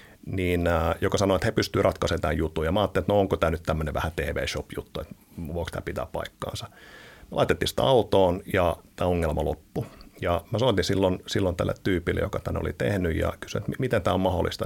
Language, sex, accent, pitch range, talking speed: Finnish, male, native, 85-100 Hz, 205 wpm